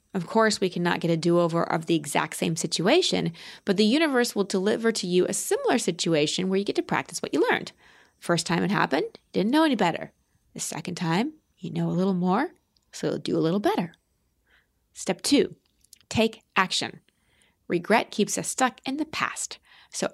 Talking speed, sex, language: 190 wpm, female, English